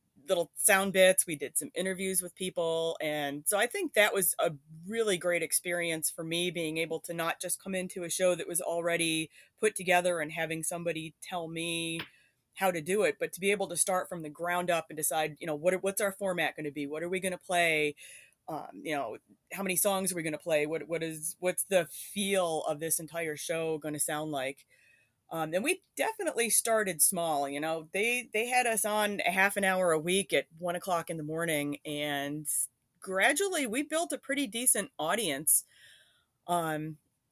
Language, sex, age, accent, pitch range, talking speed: English, female, 30-49, American, 160-195 Hz, 210 wpm